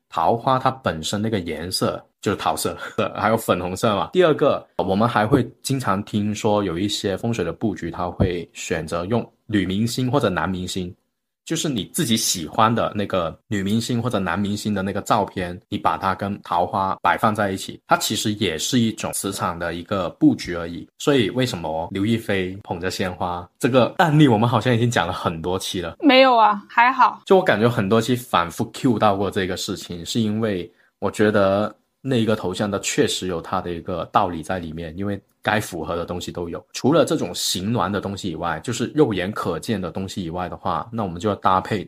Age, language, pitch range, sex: 20-39, Chinese, 90-115 Hz, male